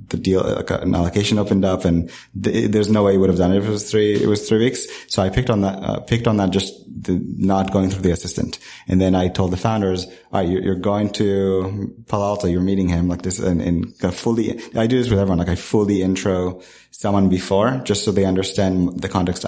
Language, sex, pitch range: English, male, 90-100 Hz